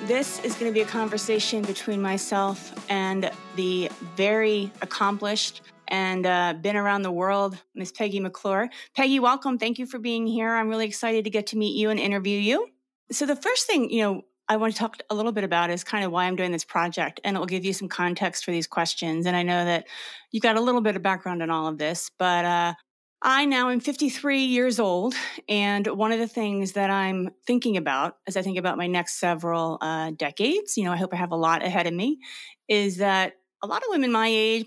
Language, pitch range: English, 185-220 Hz